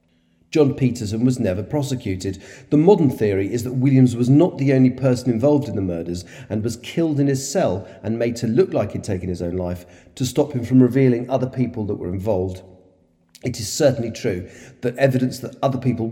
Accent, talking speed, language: British, 205 wpm, English